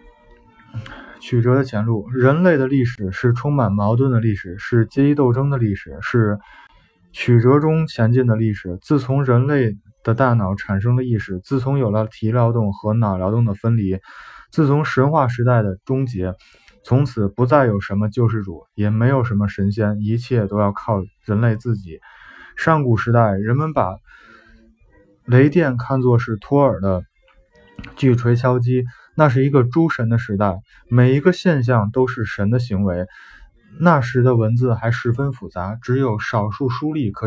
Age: 20-39